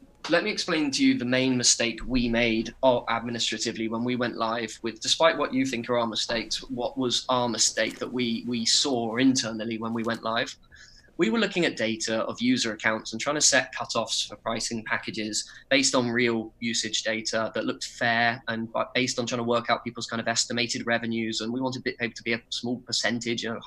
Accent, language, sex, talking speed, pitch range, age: British, English, male, 210 wpm, 115-130 Hz, 20-39